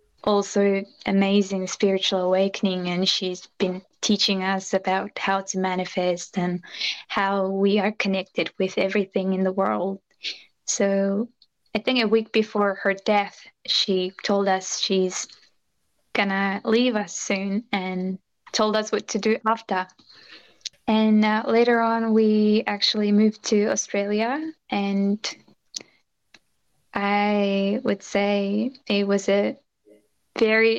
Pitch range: 195-215 Hz